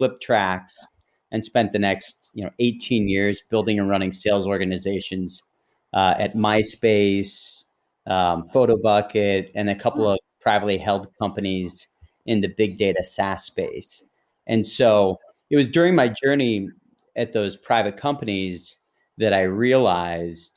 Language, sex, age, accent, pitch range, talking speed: English, male, 30-49, American, 95-115 Hz, 135 wpm